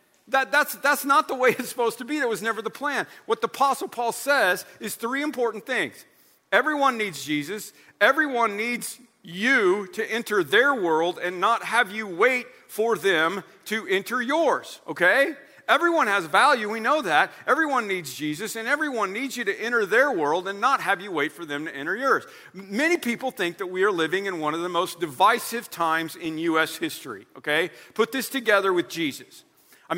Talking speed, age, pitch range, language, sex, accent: 190 wpm, 50-69, 180-270 Hz, English, male, American